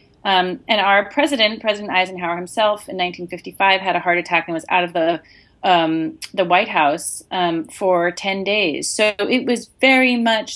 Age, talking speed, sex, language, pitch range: 30-49, 175 wpm, female, English, 175-220 Hz